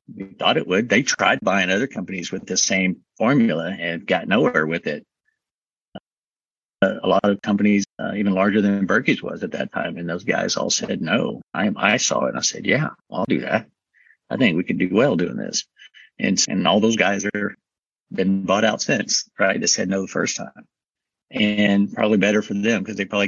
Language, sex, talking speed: English, male, 210 wpm